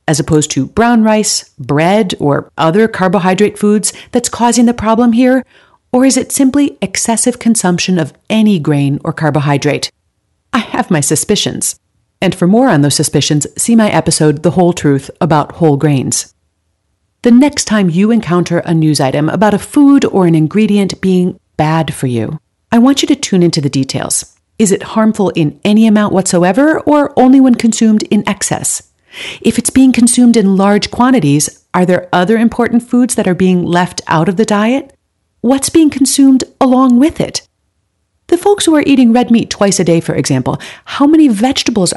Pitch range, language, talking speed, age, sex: 160-240 Hz, English, 180 wpm, 40-59, female